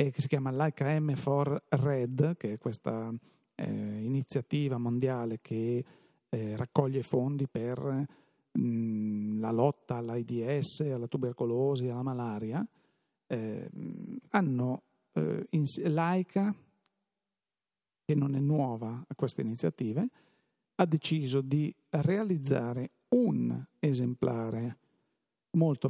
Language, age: Italian, 50-69